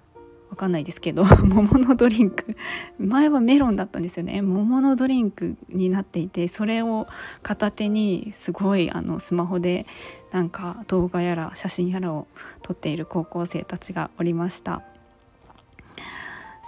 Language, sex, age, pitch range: Japanese, female, 20-39, 175-225 Hz